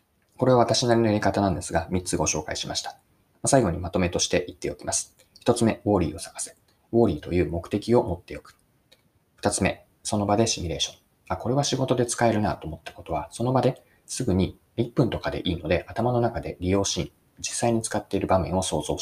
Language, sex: Japanese, male